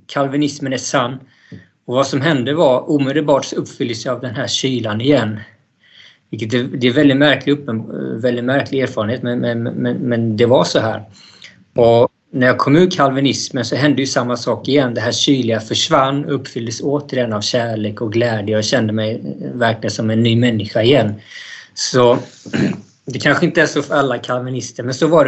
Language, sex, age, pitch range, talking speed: Swedish, male, 20-39, 115-140 Hz, 175 wpm